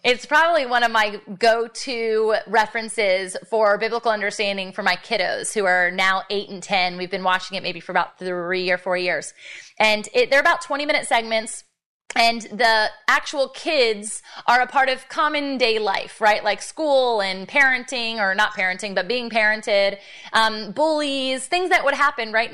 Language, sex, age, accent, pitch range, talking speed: English, female, 20-39, American, 205-260 Hz, 170 wpm